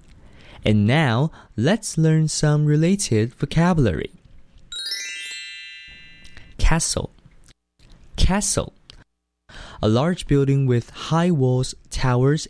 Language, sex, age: Chinese, male, 20-39